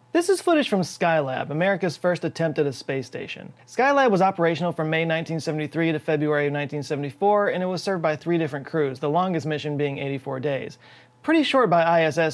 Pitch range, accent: 145-185 Hz, American